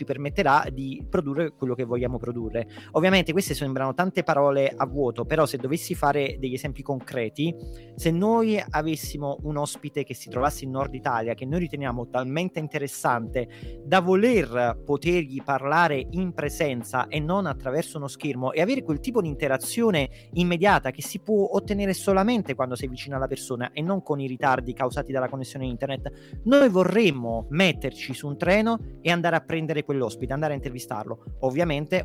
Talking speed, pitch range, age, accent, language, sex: 165 wpm, 130-170 Hz, 30-49, native, Italian, male